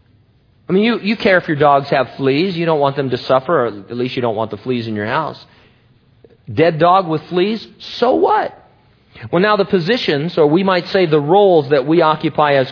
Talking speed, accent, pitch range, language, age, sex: 220 wpm, American, 140-185 Hz, English, 40-59, male